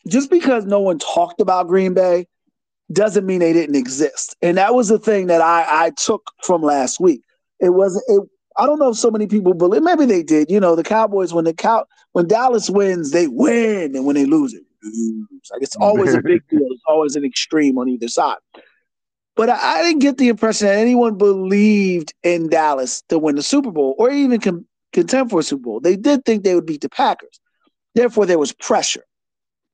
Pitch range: 160-225 Hz